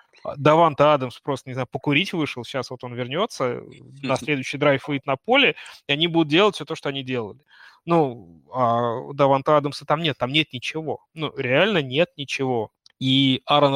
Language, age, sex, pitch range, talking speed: Russian, 20-39, male, 125-155 Hz, 180 wpm